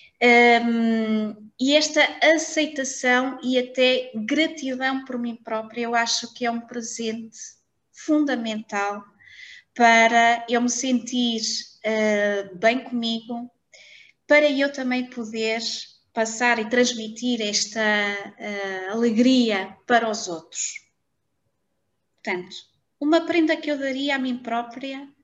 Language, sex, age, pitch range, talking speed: Portuguese, female, 20-39, 220-265 Hz, 100 wpm